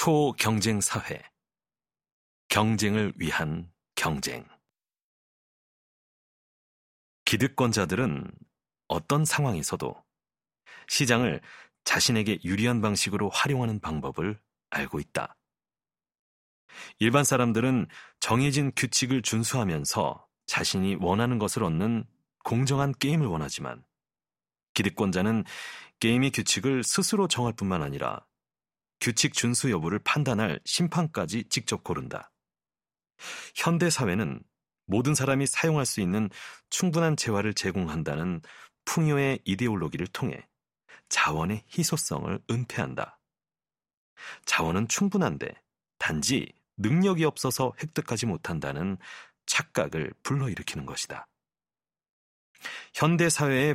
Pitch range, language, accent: 105-145 Hz, Korean, native